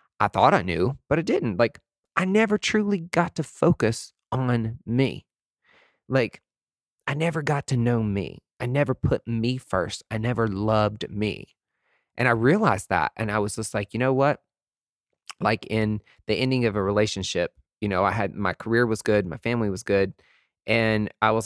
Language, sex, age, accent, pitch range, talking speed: English, male, 30-49, American, 105-135 Hz, 185 wpm